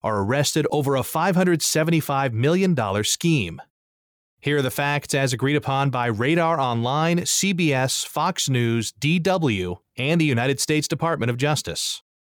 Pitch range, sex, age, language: 120-165 Hz, male, 30-49, English